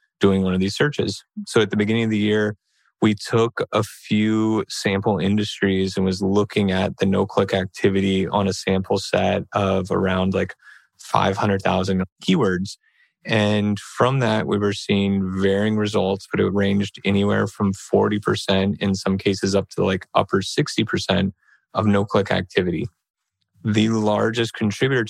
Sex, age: male, 20-39